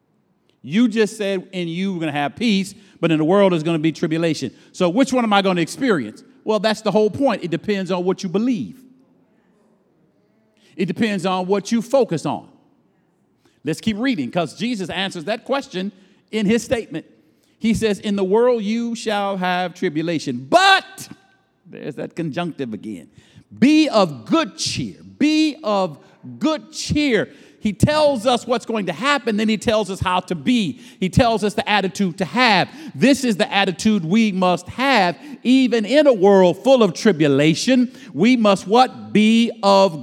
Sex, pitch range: male, 185-245 Hz